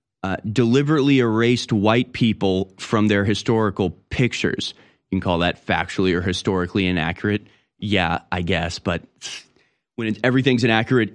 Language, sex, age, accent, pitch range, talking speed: English, male, 20-39, American, 100-130 Hz, 135 wpm